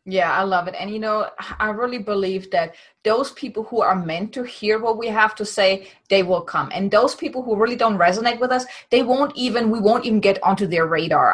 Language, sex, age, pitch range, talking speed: English, female, 20-39, 195-240 Hz, 240 wpm